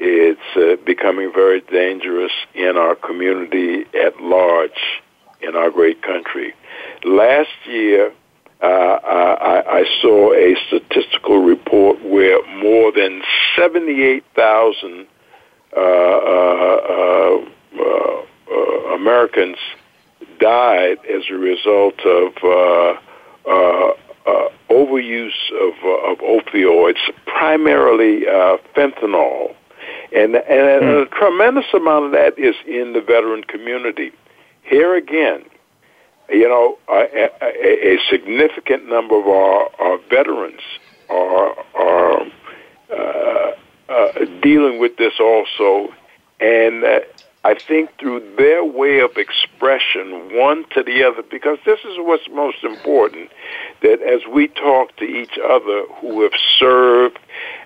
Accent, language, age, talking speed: American, English, 60-79, 110 wpm